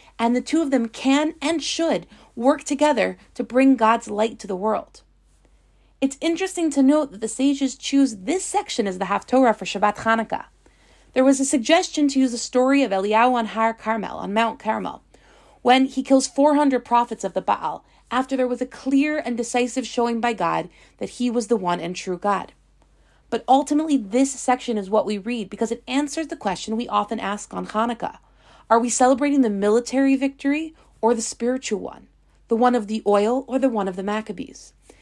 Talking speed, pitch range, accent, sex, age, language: 195 wpm, 220-275 Hz, American, female, 30-49, English